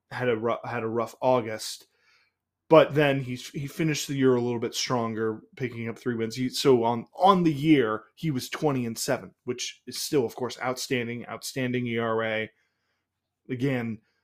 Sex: male